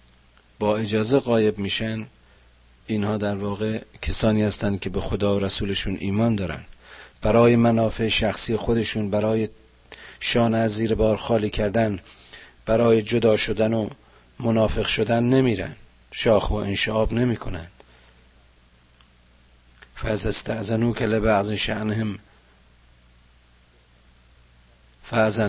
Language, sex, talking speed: Persian, male, 110 wpm